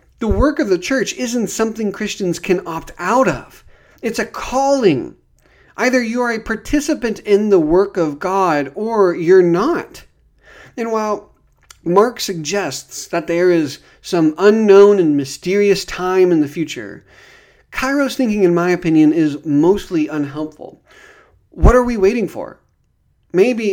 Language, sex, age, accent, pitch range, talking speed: English, male, 40-59, American, 160-215 Hz, 145 wpm